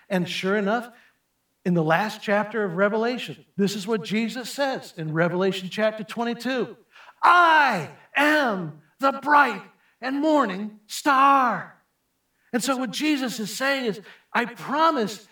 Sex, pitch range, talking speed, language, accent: male, 205-280 Hz, 135 wpm, English, American